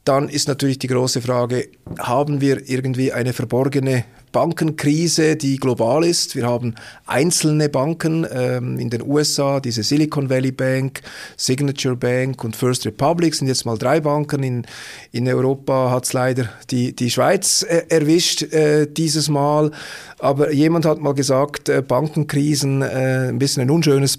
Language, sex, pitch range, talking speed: German, male, 125-150 Hz, 155 wpm